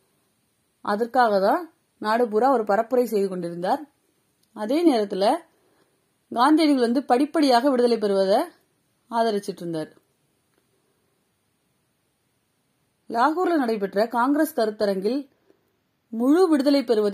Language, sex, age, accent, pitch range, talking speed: Tamil, female, 30-49, native, 210-275 Hz, 80 wpm